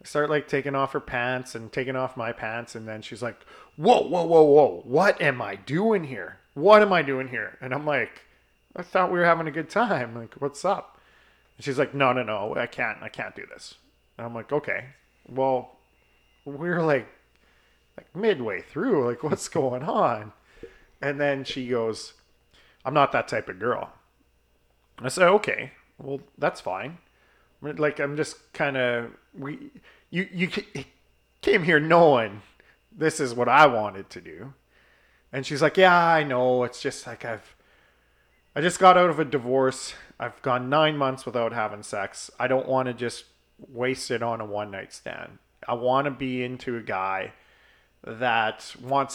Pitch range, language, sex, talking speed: 115-150 Hz, English, male, 180 wpm